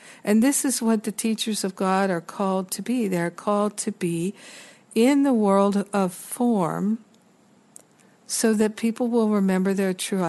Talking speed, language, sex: 170 wpm, English, female